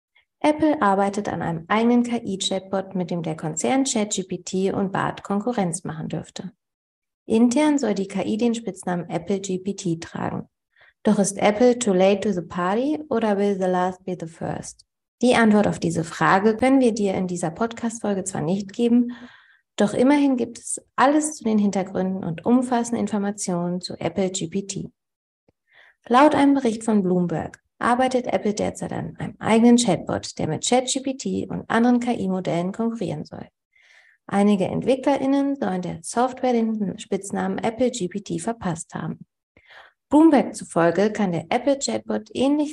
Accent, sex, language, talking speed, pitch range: German, female, German, 145 wpm, 185-240 Hz